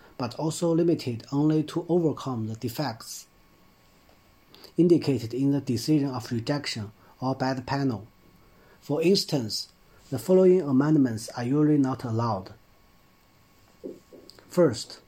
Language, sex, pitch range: Chinese, male, 115-150 Hz